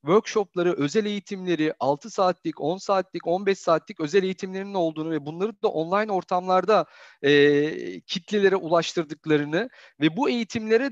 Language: Turkish